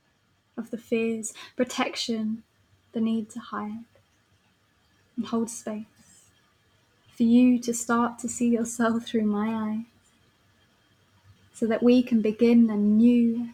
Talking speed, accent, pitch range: 125 wpm, British, 200-235 Hz